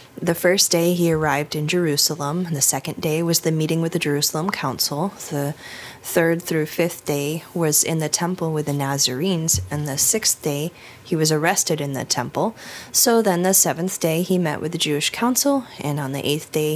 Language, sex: English, female